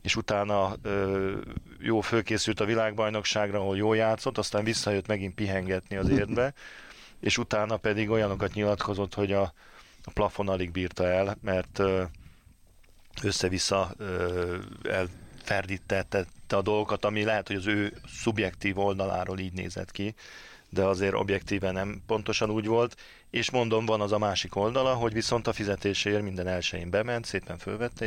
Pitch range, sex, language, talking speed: 95-110 Hz, male, Hungarian, 145 wpm